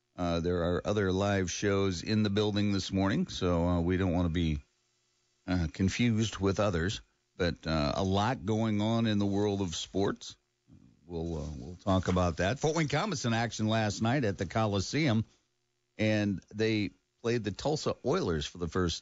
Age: 50-69